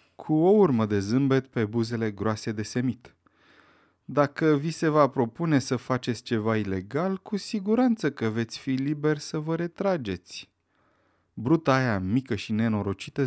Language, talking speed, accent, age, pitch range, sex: Romanian, 145 wpm, native, 30-49, 110-150 Hz, male